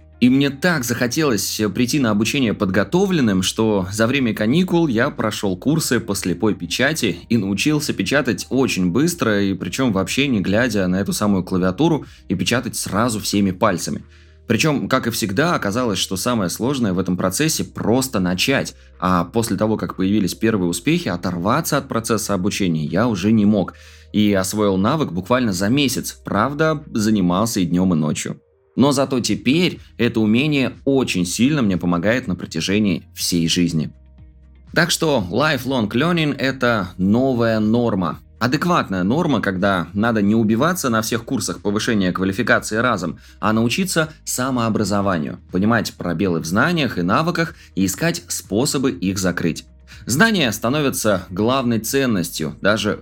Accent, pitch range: native, 90-120 Hz